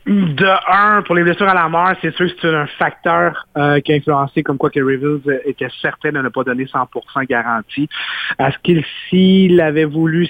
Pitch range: 135-170 Hz